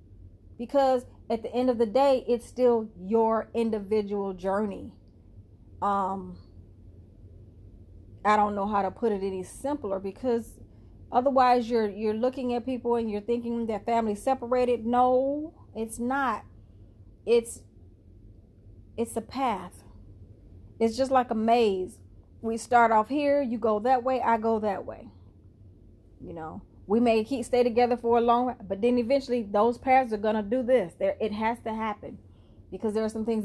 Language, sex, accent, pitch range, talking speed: English, female, American, 170-235 Hz, 160 wpm